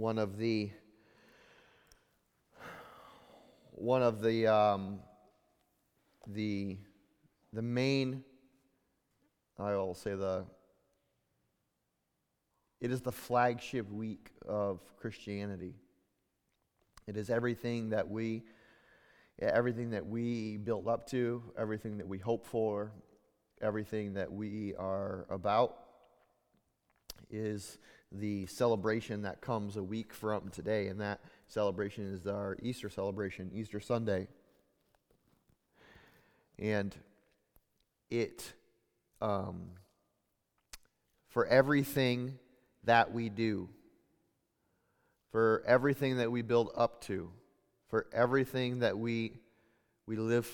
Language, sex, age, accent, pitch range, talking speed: English, male, 30-49, American, 100-115 Hz, 95 wpm